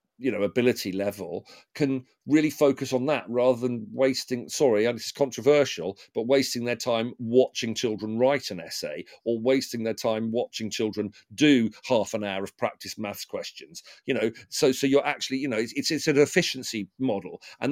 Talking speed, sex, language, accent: 185 wpm, male, English, British